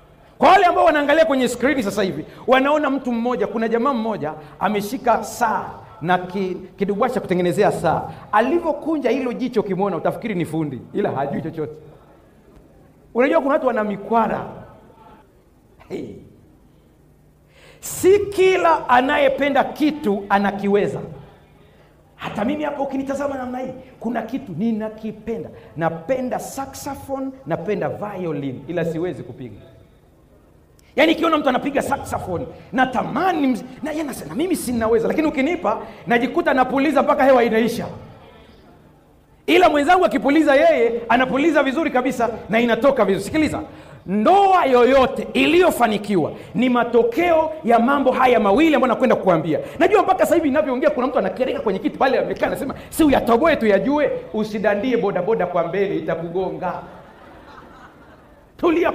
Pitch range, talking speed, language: 195-280 Hz, 120 wpm, Swahili